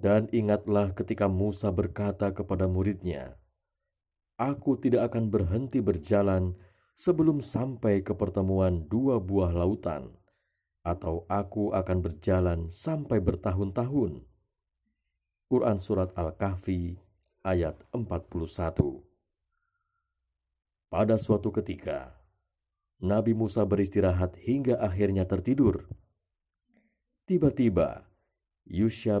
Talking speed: 85 wpm